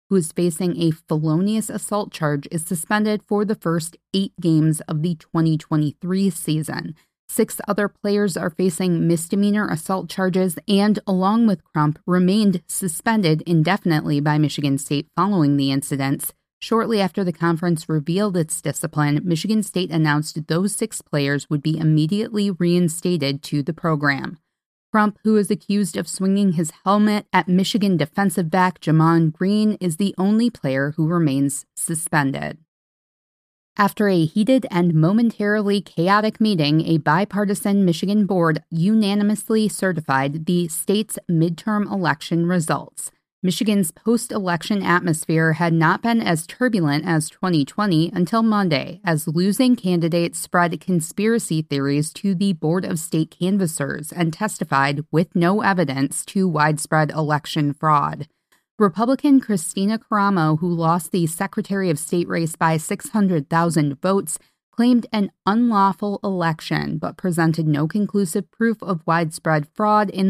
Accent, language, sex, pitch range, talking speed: American, English, female, 160-200 Hz, 135 wpm